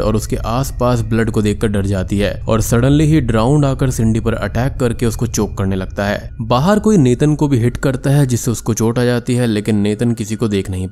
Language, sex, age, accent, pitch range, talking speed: Hindi, male, 20-39, native, 105-135 Hz, 230 wpm